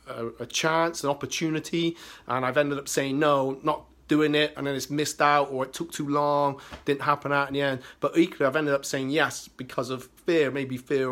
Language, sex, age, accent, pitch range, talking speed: English, male, 30-49, British, 135-165 Hz, 220 wpm